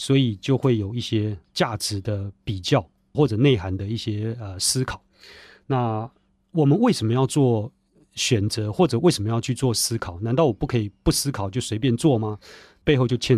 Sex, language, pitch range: male, Chinese, 105-140 Hz